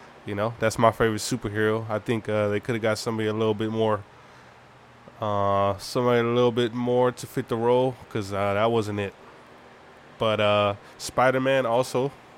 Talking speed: 175 wpm